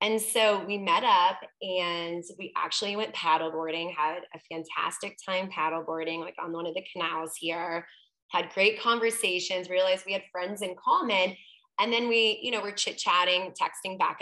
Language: English